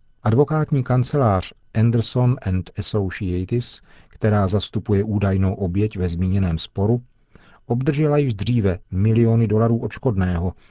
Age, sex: 40-59, male